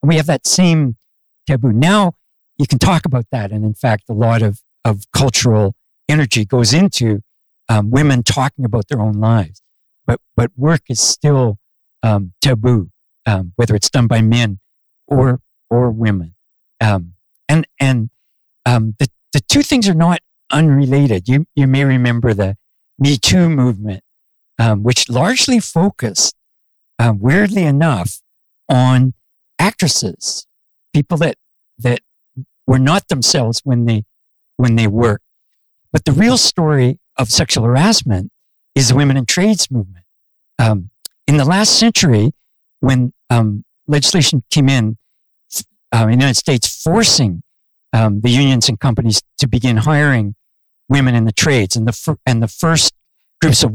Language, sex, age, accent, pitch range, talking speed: English, male, 60-79, American, 115-145 Hz, 150 wpm